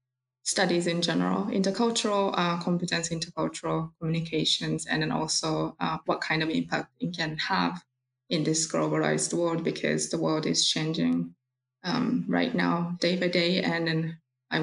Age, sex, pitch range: 20-39, female, 125-180 Hz